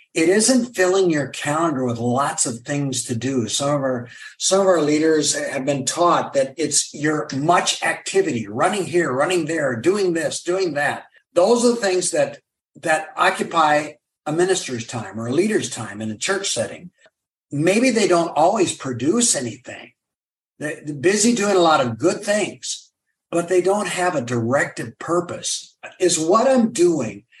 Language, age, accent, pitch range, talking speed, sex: English, 50-69, American, 145-195 Hz, 170 wpm, male